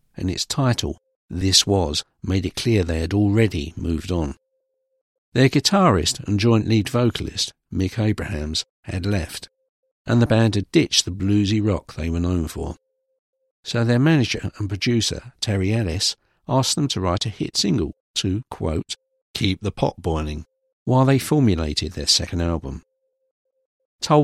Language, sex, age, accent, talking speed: English, male, 50-69, British, 155 wpm